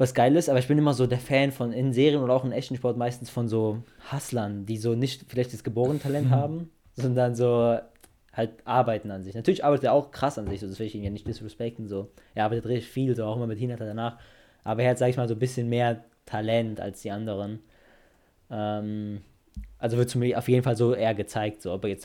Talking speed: 240 wpm